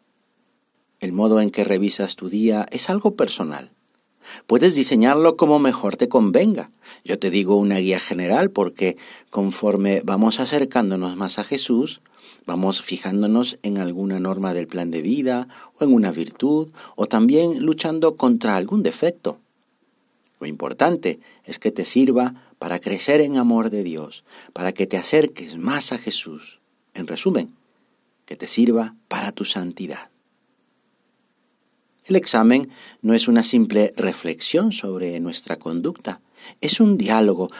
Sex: male